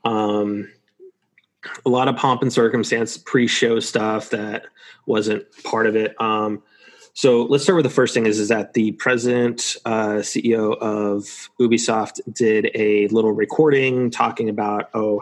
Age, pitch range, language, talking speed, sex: 30-49, 110-120 Hz, English, 150 wpm, male